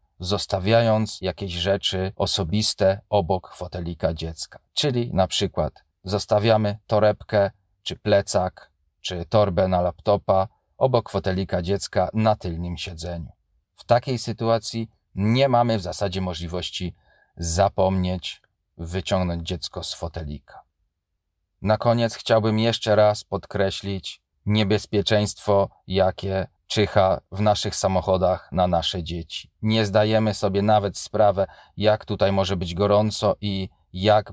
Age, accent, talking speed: 40-59, native, 110 wpm